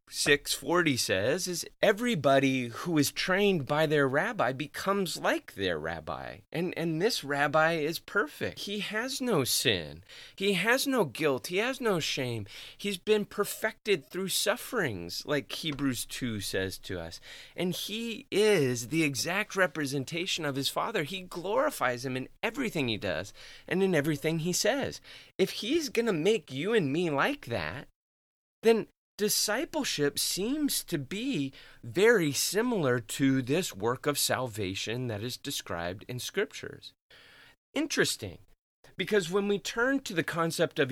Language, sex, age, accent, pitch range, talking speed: English, male, 30-49, American, 130-195 Hz, 145 wpm